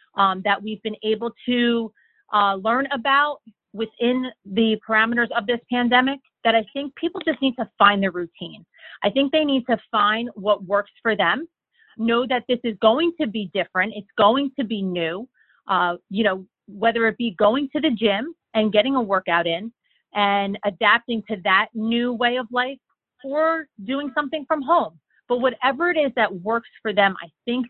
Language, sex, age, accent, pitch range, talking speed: English, female, 30-49, American, 200-250 Hz, 185 wpm